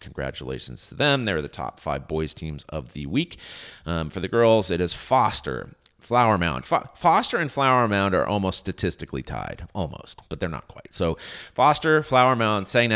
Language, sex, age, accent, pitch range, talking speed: English, male, 30-49, American, 80-115 Hz, 180 wpm